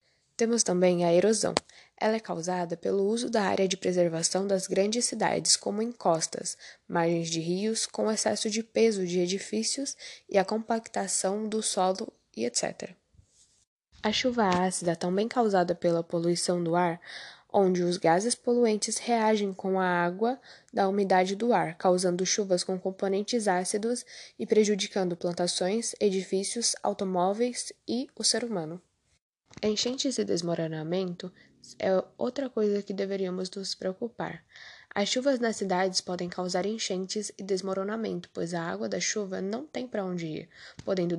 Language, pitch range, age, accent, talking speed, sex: Portuguese, 180-220 Hz, 10-29, Brazilian, 145 wpm, female